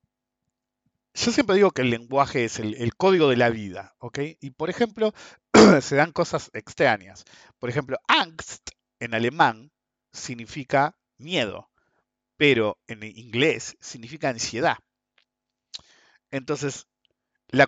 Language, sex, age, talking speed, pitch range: Spanish, male, 50-69, 120 wpm, 120-165 Hz